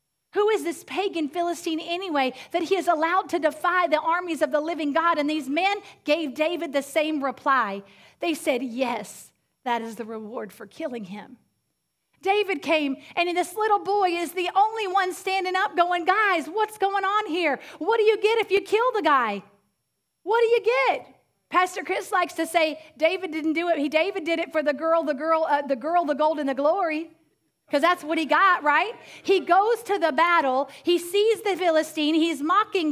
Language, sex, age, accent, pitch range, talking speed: English, female, 40-59, American, 290-375 Hz, 200 wpm